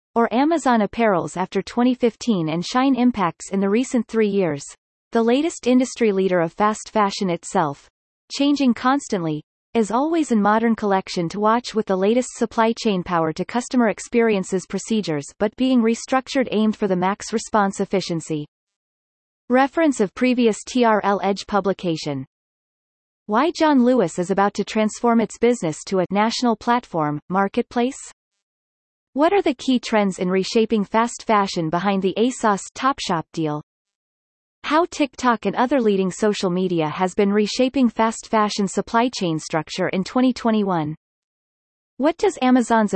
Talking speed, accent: 145 wpm, American